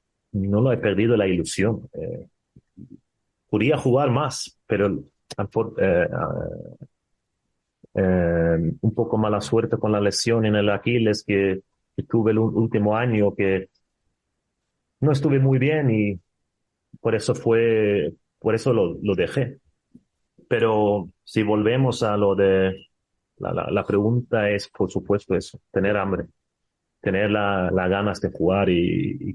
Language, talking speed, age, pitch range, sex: Portuguese, 135 wpm, 30-49, 100-125 Hz, male